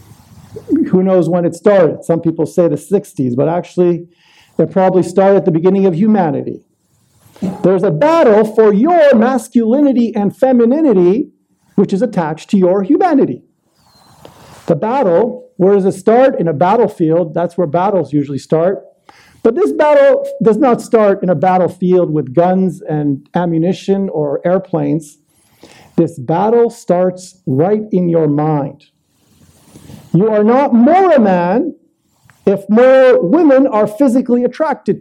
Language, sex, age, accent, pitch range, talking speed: English, male, 50-69, American, 175-240 Hz, 140 wpm